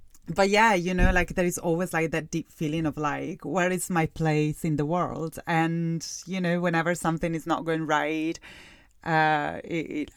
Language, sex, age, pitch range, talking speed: English, female, 30-49, 155-185 Hz, 195 wpm